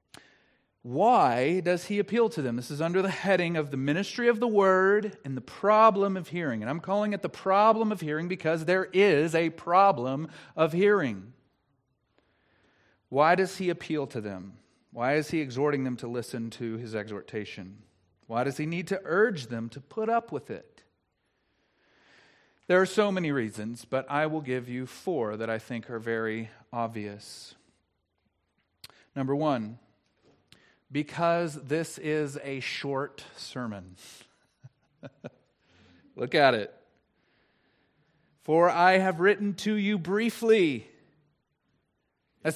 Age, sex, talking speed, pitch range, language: 40-59, male, 140 wpm, 130-205 Hz, English